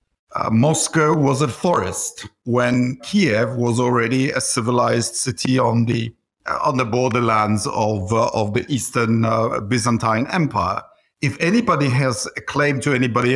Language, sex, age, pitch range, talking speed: English, male, 50-69, 115-155 Hz, 150 wpm